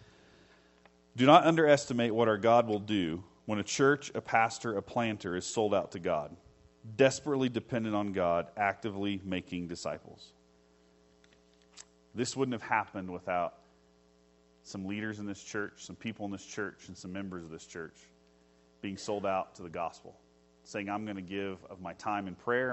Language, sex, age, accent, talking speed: English, male, 40-59, American, 170 wpm